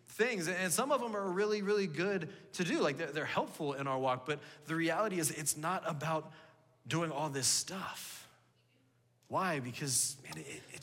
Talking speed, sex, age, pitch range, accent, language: 175 wpm, male, 20-39, 120-165 Hz, American, English